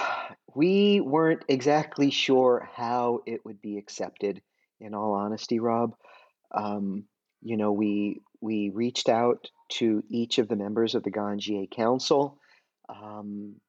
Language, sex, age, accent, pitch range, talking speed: English, male, 40-59, American, 110-145 Hz, 130 wpm